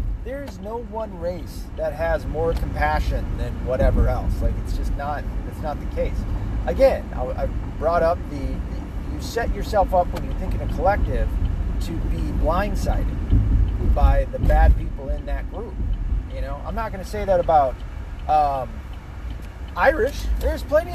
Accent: American